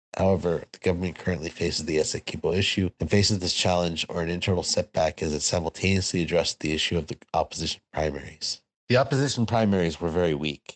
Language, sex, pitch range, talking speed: English, male, 75-90 Hz, 180 wpm